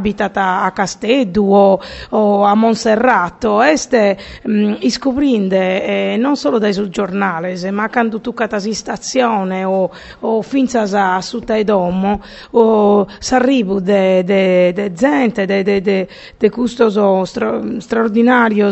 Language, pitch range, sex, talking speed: Italian, 200-240 Hz, female, 120 wpm